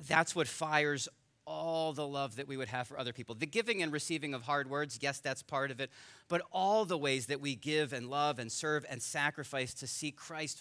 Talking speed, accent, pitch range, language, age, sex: 230 wpm, American, 115-145 Hz, English, 40-59, male